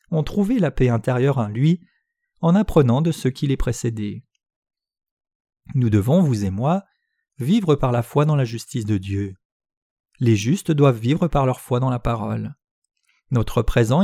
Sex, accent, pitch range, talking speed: male, French, 115-175 Hz, 170 wpm